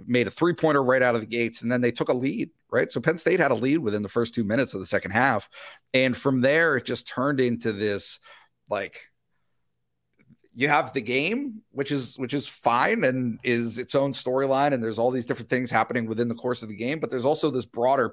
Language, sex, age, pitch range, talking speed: English, male, 40-59, 115-145 Hz, 235 wpm